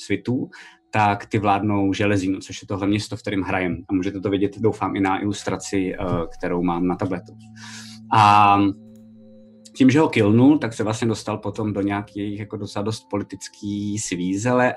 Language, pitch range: Czech, 95-110 Hz